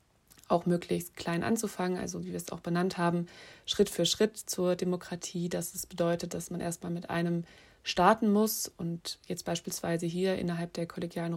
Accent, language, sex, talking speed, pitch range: German, German, female, 175 wpm, 170-185 Hz